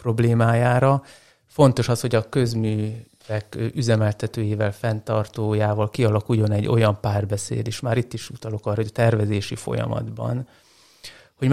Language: Hungarian